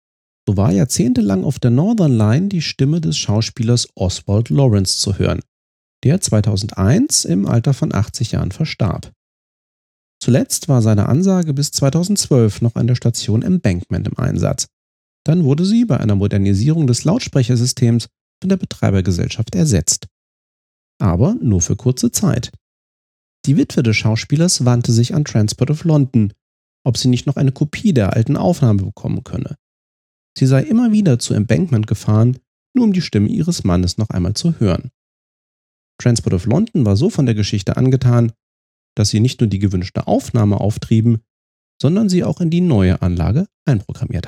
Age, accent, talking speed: 40-59, German, 155 wpm